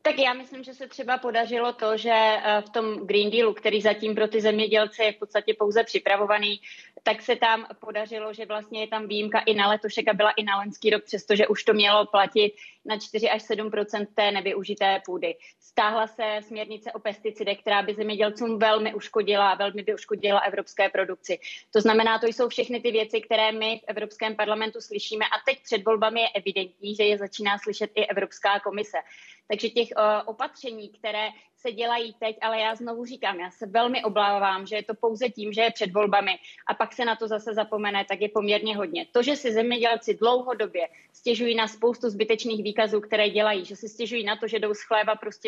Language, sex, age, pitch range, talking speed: Czech, female, 20-39, 210-225 Hz, 200 wpm